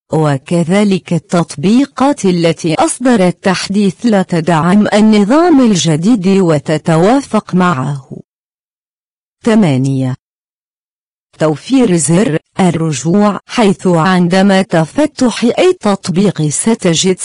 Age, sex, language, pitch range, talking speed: 50-69, female, Arabic, 165-235 Hz, 75 wpm